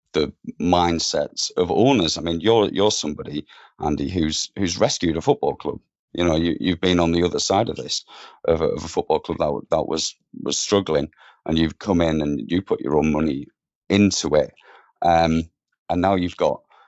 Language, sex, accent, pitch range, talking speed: English, male, British, 80-90 Hz, 195 wpm